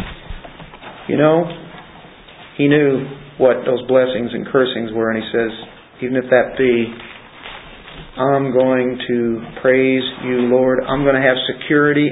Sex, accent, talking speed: male, American, 140 wpm